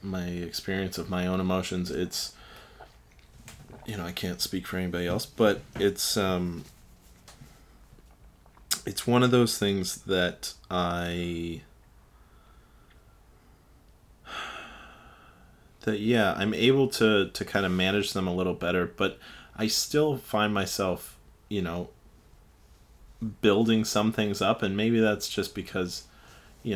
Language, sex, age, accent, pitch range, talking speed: English, male, 20-39, American, 90-105 Hz, 125 wpm